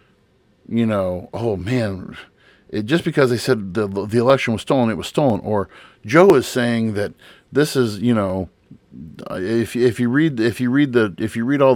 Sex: male